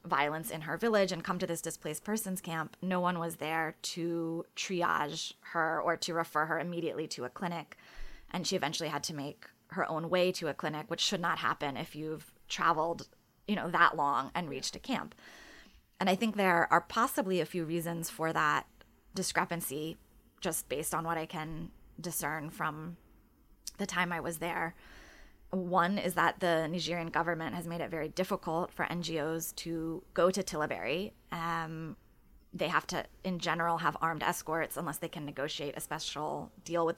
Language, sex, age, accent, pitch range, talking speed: English, female, 20-39, American, 160-180 Hz, 180 wpm